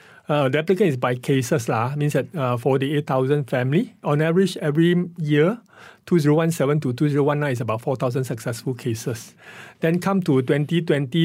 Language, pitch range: English, 130-165 Hz